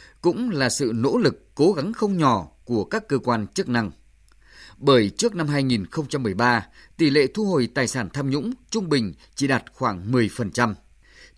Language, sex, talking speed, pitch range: Vietnamese, male, 175 wpm, 115-160 Hz